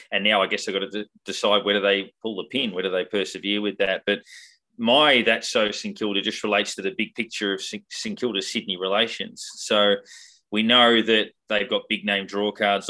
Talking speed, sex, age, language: 215 wpm, male, 20-39, English